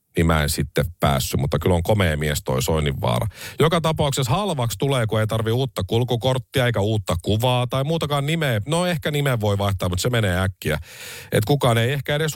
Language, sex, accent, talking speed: Finnish, male, native, 200 wpm